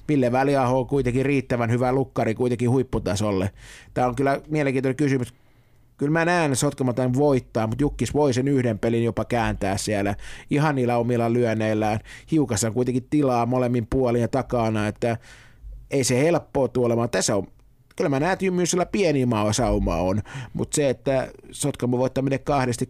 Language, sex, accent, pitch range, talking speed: Finnish, male, native, 115-135 Hz, 155 wpm